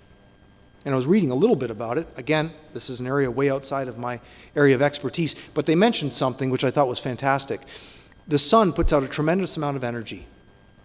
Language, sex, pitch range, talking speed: English, male, 135-180 Hz, 215 wpm